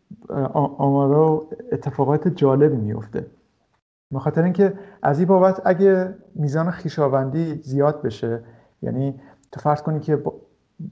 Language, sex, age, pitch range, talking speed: English, male, 50-69, 130-155 Hz, 120 wpm